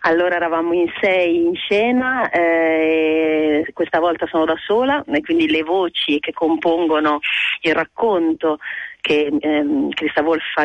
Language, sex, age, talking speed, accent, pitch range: Italian, female, 40-59, 145 wpm, native, 155-180 Hz